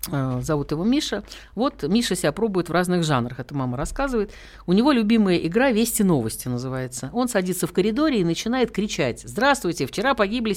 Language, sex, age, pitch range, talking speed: Russian, female, 50-69, 145-215 Hz, 170 wpm